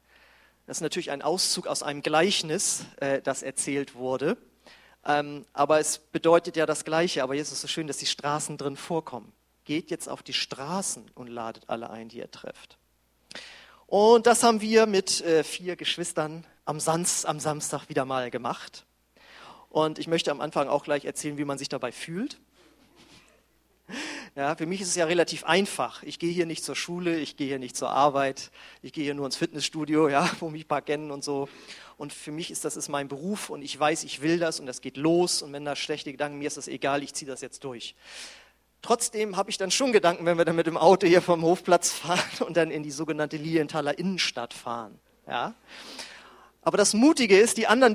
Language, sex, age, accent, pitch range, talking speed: German, male, 40-59, German, 145-175 Hz, 205 wpm